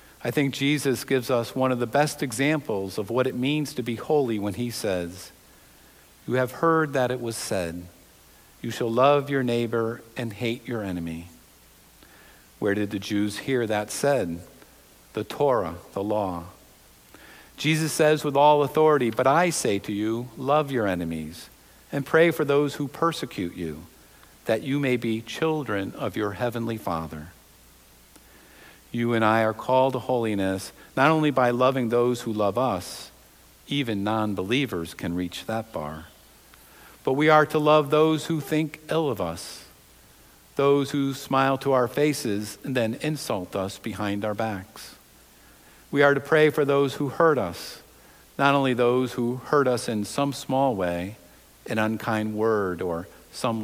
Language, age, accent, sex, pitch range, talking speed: English, 50-69, American, male, 100-140 Hz, 160 wpm